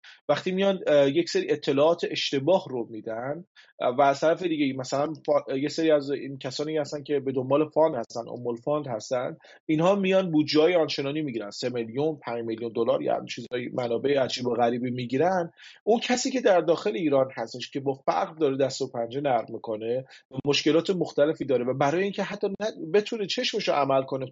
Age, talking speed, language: 30-49, 185 wpm, English